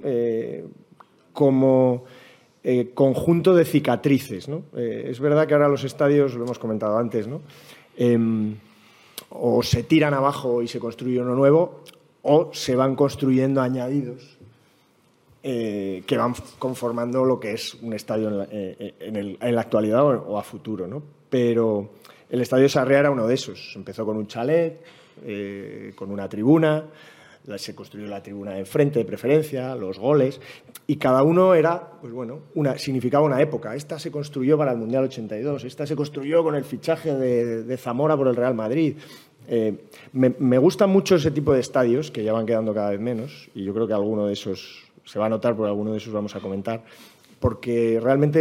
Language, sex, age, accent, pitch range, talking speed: Spanish, male, 30-49, Spanish, 110-145 Hz, 175 wpm